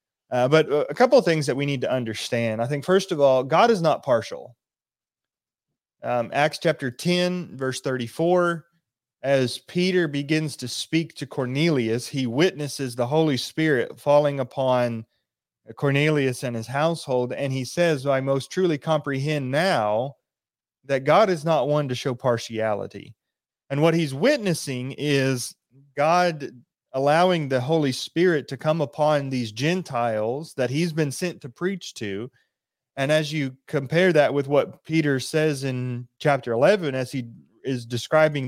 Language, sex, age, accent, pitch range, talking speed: English, male, 30-49, American, 125-160 Hz, 155 wpm